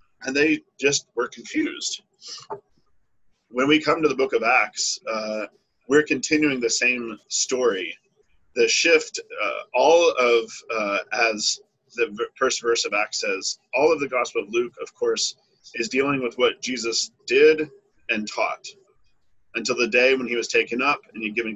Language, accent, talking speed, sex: English, American, 165 wpm, male